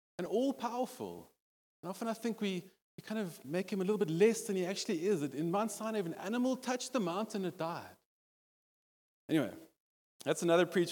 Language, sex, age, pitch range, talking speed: English, male, 30-49, 175-235 Hz, 200 wpm